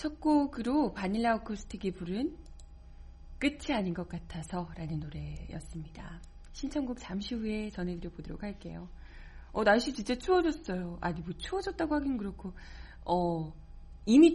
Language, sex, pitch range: Korean, female, 165-230 Hz